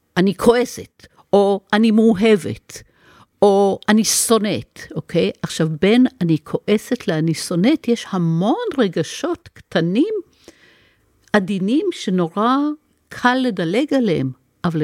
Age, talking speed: 60-79, 100 wpm